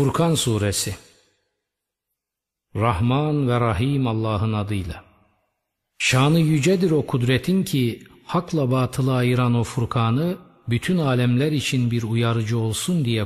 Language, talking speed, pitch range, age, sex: Turkish, 110 wpm, 110-150 Hz, 50-69, male